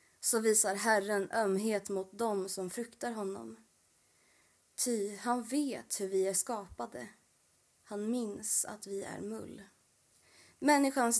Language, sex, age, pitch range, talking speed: Swedish, female, 20-39, 180-225 Hz, 125 wpm